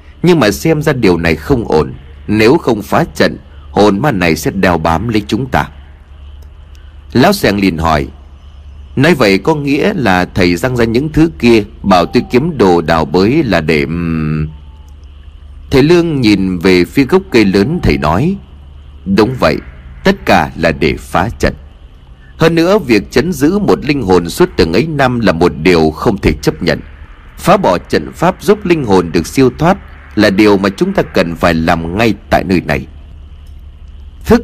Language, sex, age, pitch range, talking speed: Vietnamese, male, 30-49, 75-110 Hz, 180 wpm